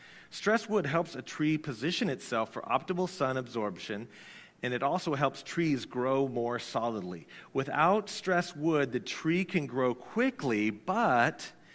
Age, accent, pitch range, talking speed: 40-59, American, 110-160 Hz, 145 wpm